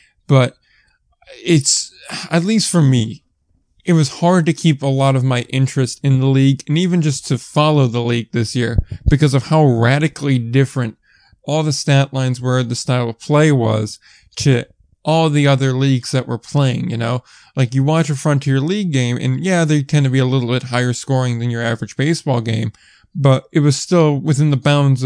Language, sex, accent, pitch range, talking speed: English, male, American, 125-145 Hz, 200 wpm